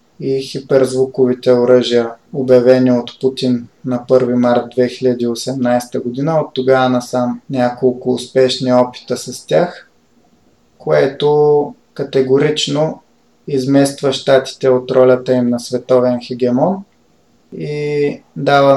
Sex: male